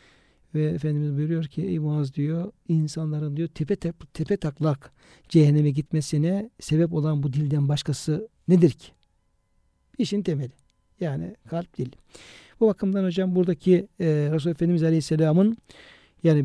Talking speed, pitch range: 130 wpm, 150-175 Hz